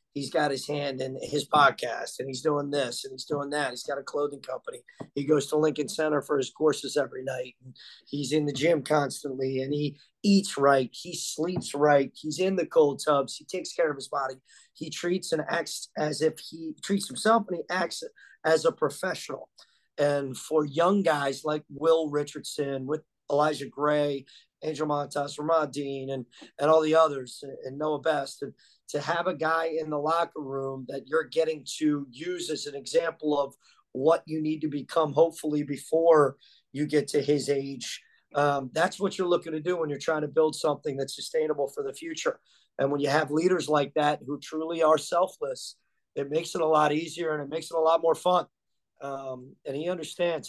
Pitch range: 145-165 Hz